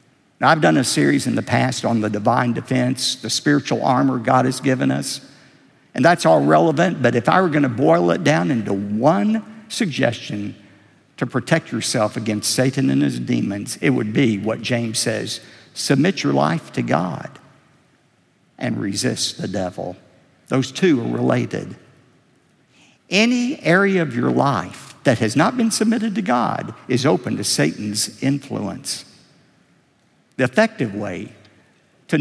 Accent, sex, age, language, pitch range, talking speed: American, male, 50-69, English, 110-155 Hz, 150 wpm